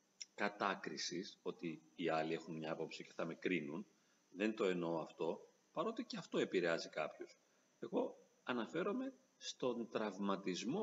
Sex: male